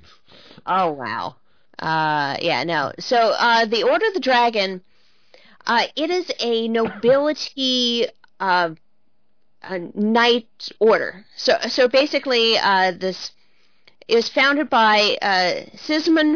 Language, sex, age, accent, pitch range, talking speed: English, female, 30-49, American, 185-245 Hz, 115 wpm